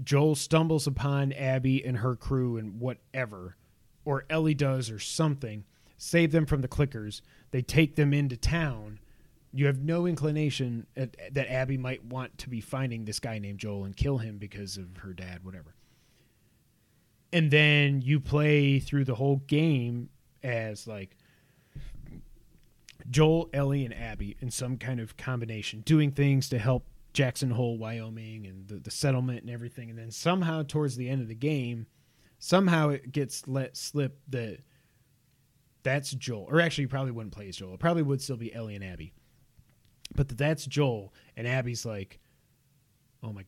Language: English